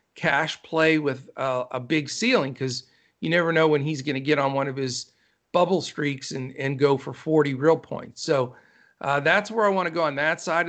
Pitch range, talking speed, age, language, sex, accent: 140-170 Hz, 225 wpm, 50-69, English, male, American